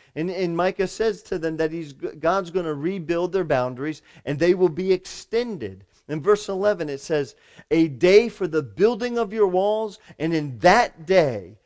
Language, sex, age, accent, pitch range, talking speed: English, male, 40-59, American, 135-180 Hz, 185 wpm